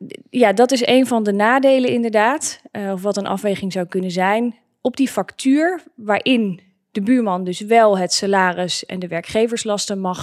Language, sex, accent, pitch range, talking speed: Dutch, female, Dutch, 190-235 Hz, 170 wpm